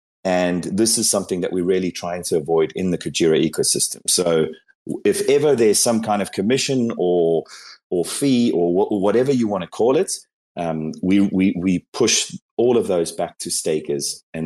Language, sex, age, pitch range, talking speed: English, male, 30-49, 95-125 Hz, 185 wpm